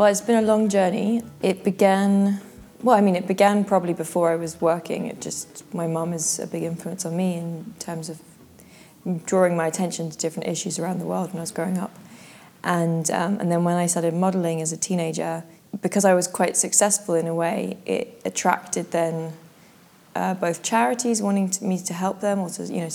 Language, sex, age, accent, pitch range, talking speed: English, female, 20-39, British, 165-195 Hz, 205 wpm